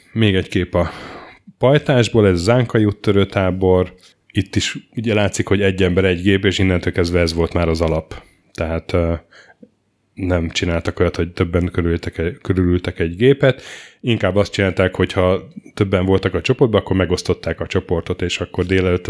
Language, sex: Hungarian, male